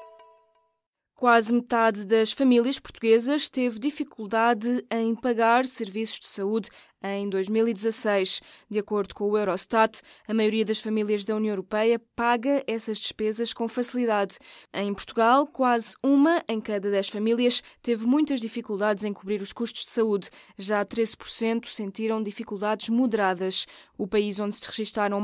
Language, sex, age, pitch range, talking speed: Portuguese, female, 20-39, 205-245 Hz, 140 wpm